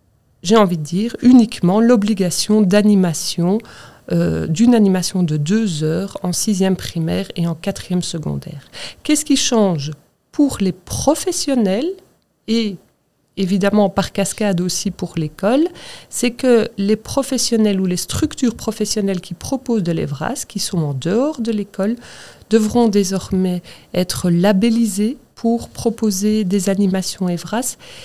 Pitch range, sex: 175-220 Hz, female